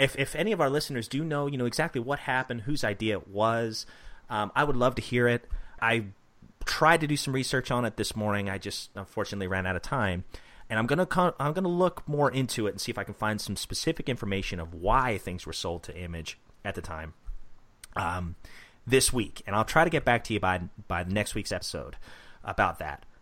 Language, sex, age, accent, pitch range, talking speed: English, male, 30-49, American, 105-145 Hz, 225 wpm